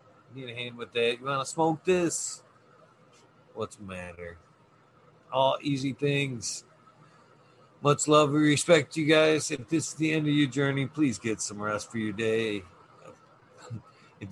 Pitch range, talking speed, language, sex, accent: 115-150 Hz, 165 wpm, English, male, American